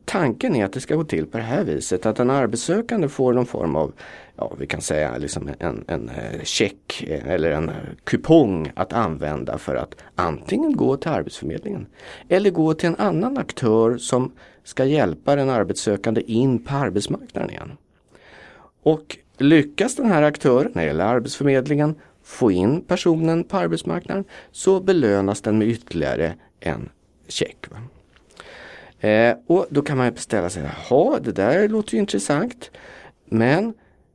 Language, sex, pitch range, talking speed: Swedish, male, 110-160 Hz, 155 wpm